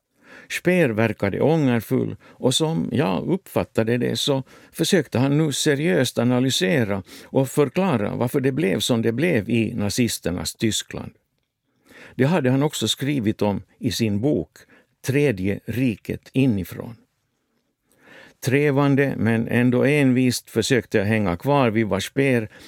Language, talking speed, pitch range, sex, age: Swedish, 125 wpm, 115-140 Hz, male, 60-79